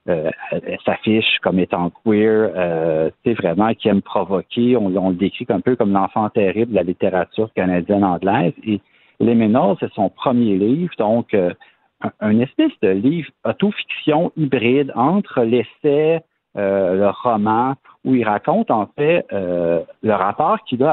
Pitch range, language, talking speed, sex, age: 100-140 Hz, French, 165 wpm, male, 50-69